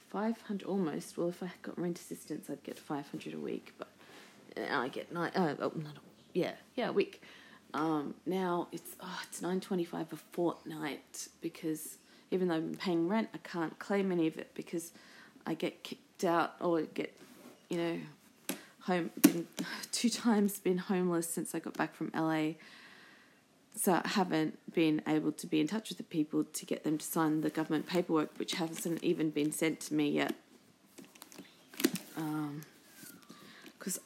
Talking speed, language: 175 wpm, English